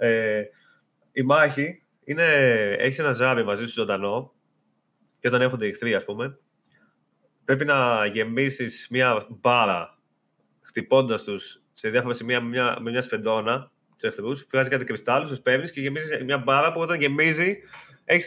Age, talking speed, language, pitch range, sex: 20-39, 150 wpm, Greek, 125-170 Hz, male